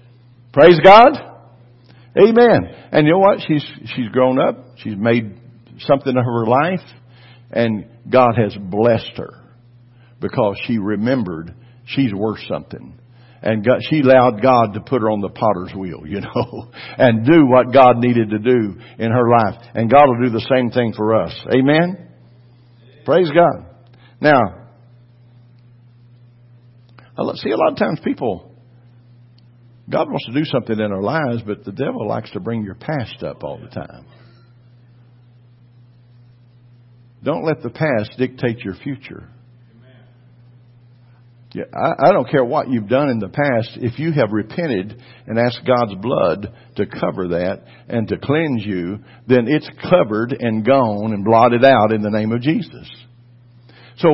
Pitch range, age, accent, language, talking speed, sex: 115-130 Hz, 60-79, American, English, 155 wpm, male